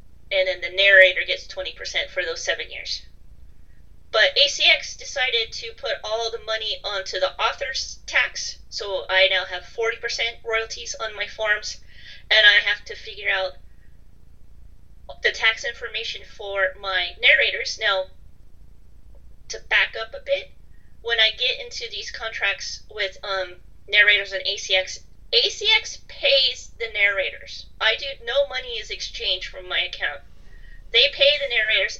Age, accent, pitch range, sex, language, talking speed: 30-49, American, 190-280 Hz, female, English, 150 wpm